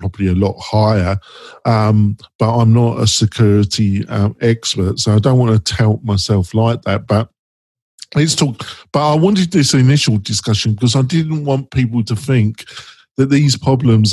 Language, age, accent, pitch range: English, 50-69, British, 110-140 Hz